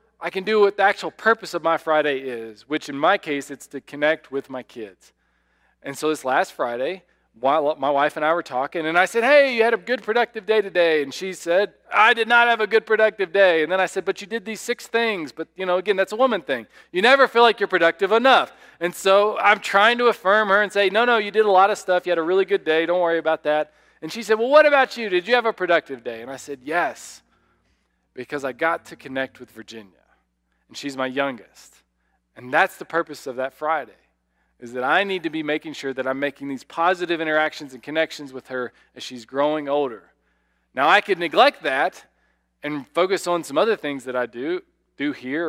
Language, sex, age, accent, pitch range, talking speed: English, male, 40-59, American, 140-200 Hz, 235 wpm